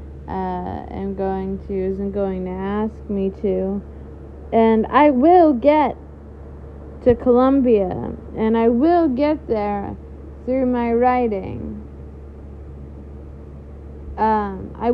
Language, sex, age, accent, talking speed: English, female, 20-39, American, 105 wpm